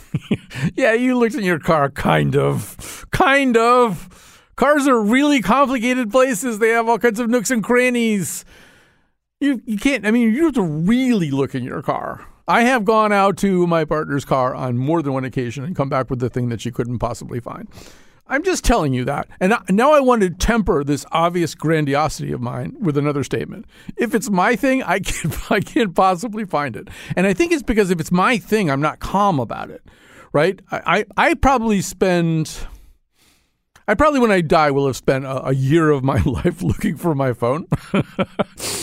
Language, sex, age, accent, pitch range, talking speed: English, male, 50-69, American, 135-215 Hz, 195 wpm